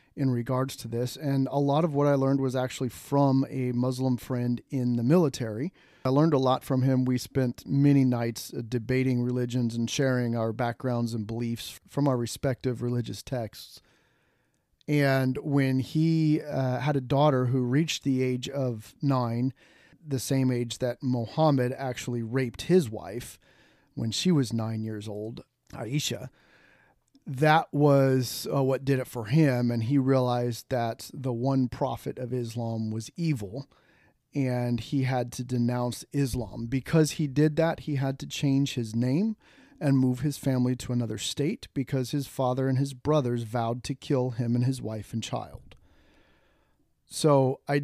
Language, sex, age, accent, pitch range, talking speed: English, male, 40-59, American, 120-140 Hz, 165 wpm